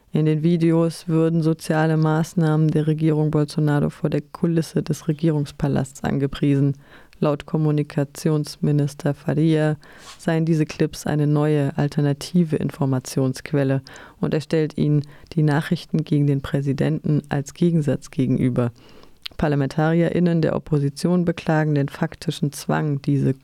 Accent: German